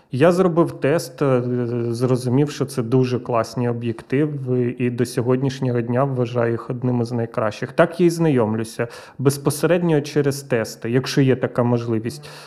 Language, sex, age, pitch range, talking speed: Ukrainian, male, 30-49, 125-145 Hz, 140 wpm